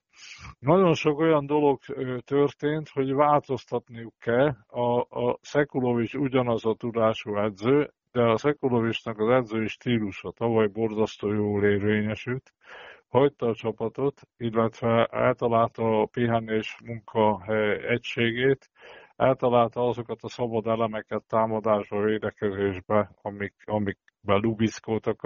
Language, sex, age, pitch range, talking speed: Hungarian, male, 50-69, 110-125 Hz, 105 wpm